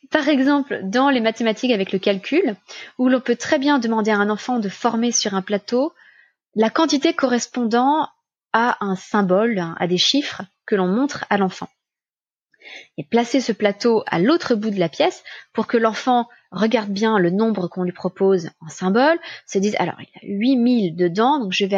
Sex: female